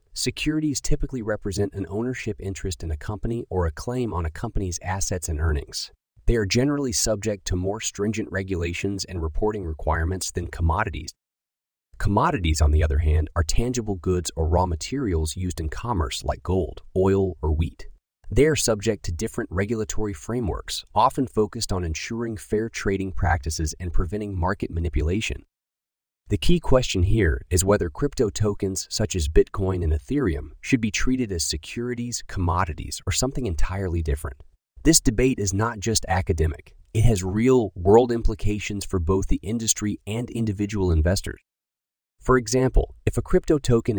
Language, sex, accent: English, male, American